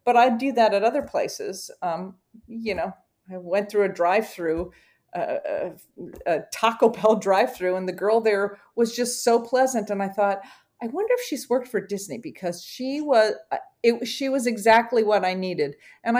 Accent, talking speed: American, 185 wpm